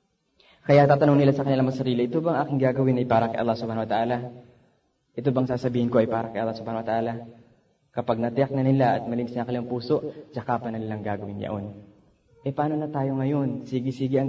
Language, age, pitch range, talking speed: Filipino, 20-39, 115-140 Hz, 205 wpm